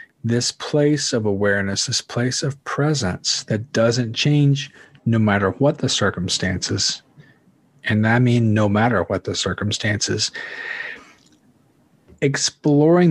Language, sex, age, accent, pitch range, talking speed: English, male, 40-59, American, 105-140 Hz, 115 wpm